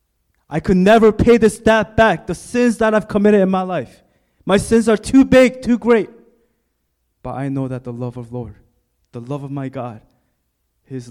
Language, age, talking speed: English, 20-39, 195 wpm